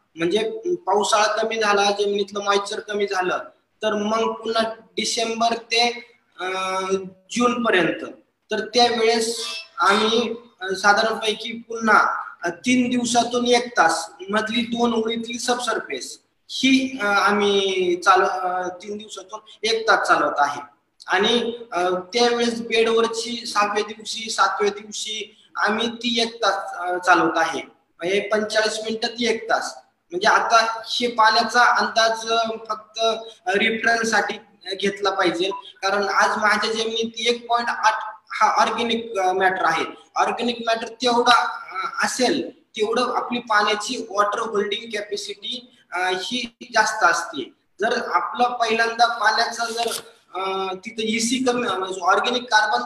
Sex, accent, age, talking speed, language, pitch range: male, Indian, 20-39, 60 wpm, English, 200-230 Hz